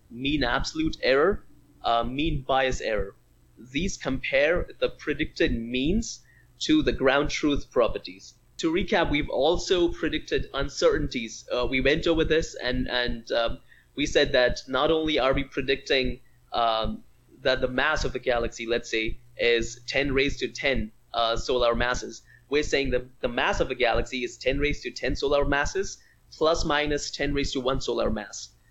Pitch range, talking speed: 125-175 Hz, 165 wpm